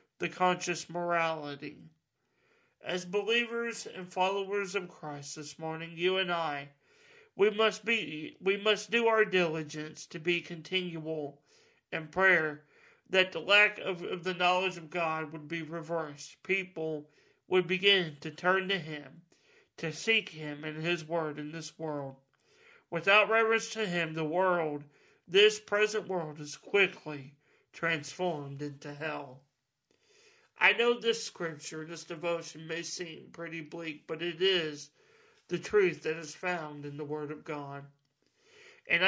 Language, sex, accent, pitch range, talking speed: English, male, American, 150-185 Hz, 145 wpm